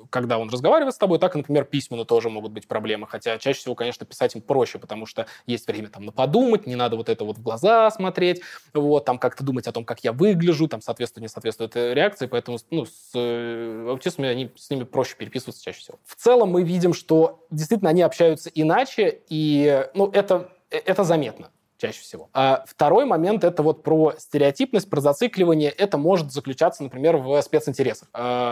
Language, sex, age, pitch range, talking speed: Russian, male, 20-39, 125-175 Hz, 185 wpm